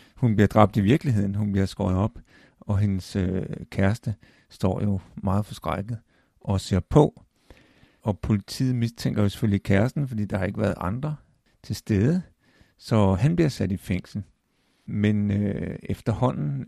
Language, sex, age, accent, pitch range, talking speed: Danish, male, 50-69, native, 100-115 Hz, 155 wpm